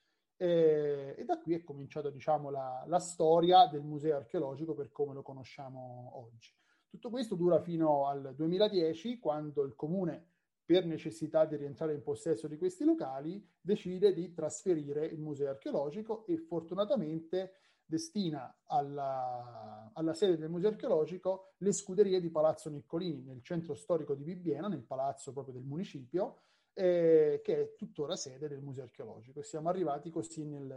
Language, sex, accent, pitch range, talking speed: Italian, male, native, 140-175 Hz, 150 wpm